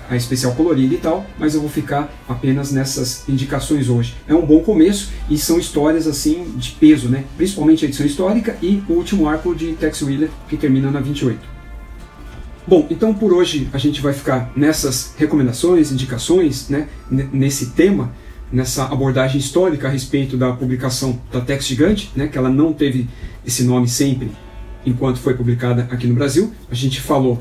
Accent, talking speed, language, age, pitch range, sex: Brazilian, 175 wpm, Portuguese, 40-59, 130-155 Hz, male